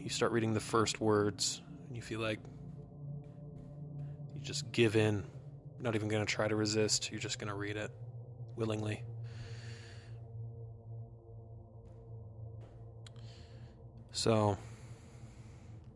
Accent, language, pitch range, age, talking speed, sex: American, English, 105-115 Hz, 20-39, 115 wpm, male